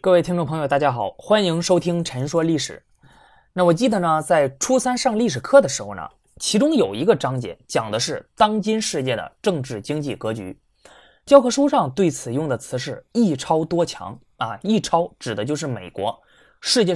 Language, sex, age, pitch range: Chinese, male, 20-39, 135-205 Hz